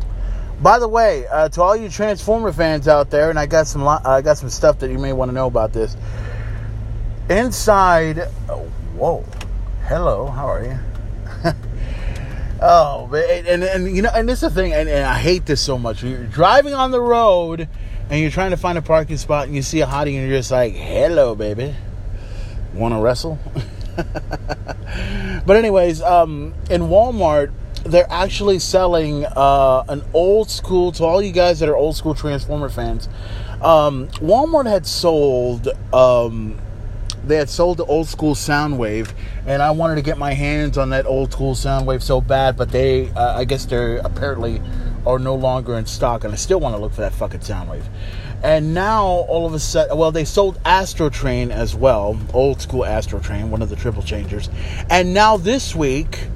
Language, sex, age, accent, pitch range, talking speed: English, male, 30-49, American, 110-165 Hz, 185 wpm